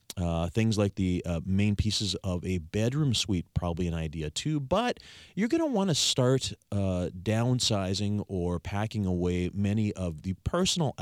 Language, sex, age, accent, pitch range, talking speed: English, male, 30-49, American, 90-125 Hz, 165 wpm